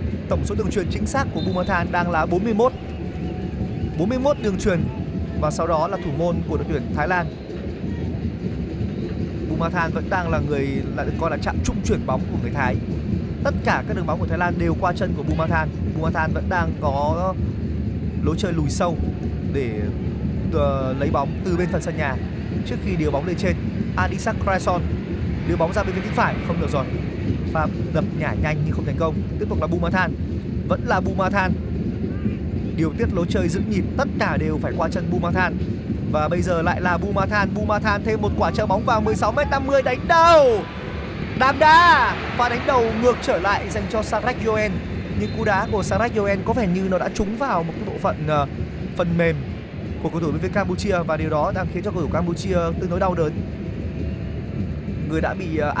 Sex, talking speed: male, 195 wpm